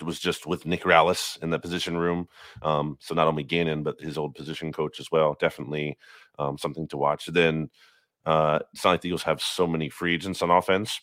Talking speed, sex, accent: 220 wpm, male, American